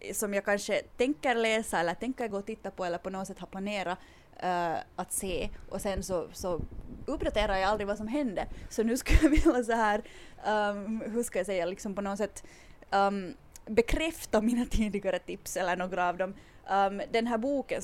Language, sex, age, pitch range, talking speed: English, female, 20-39, 180-225 Hz, 200 wpm